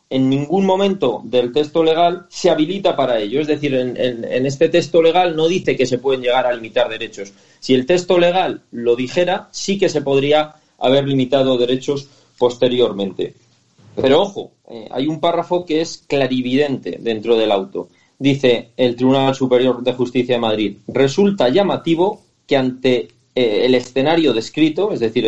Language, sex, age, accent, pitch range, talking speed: Spanish, male, 40-59, Spanish, 125-160 Hz, 170 wpm